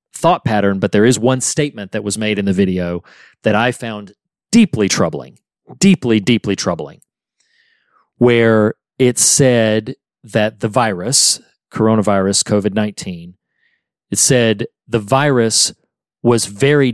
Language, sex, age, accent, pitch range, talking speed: English, male, 40-59, American, 105-130 Hz, 125 wpm